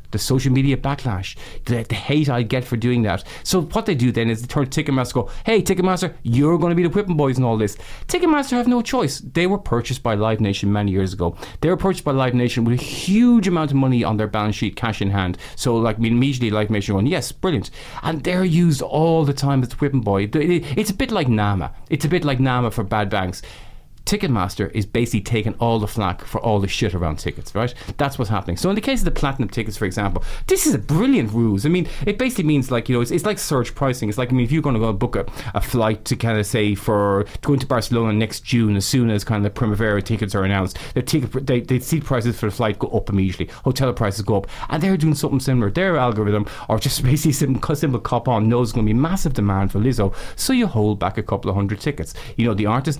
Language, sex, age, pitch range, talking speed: English, male, 30-49, 105-145 Hz, 260 wpm